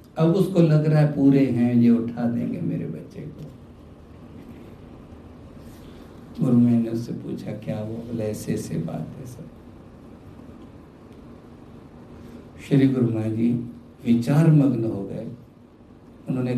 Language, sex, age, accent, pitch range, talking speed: Hindi, male, 60-79, native, 110-130 Hz, 125 wpm